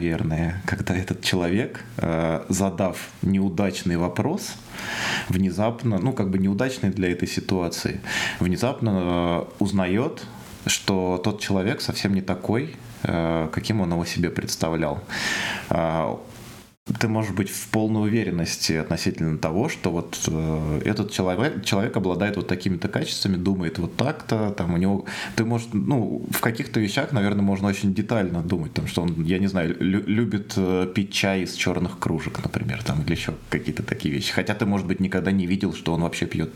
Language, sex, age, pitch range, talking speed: Russian, male, 20-39, 85-100 Hz, 150 wpm